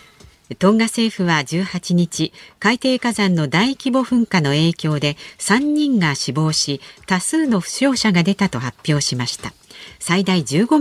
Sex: female